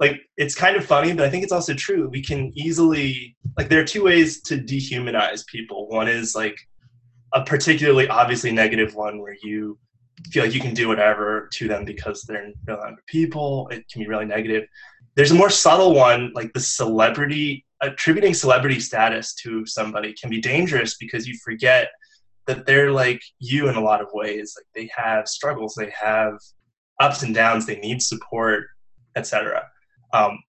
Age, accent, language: 20-39, American, English